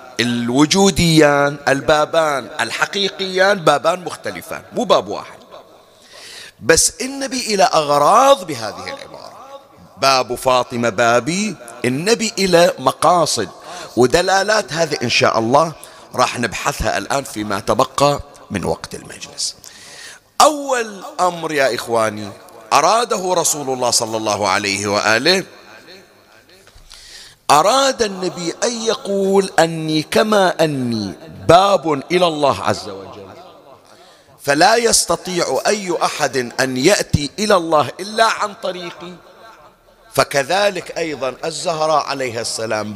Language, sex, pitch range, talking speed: Arabic, male, 130-200 Hz, 100 wpm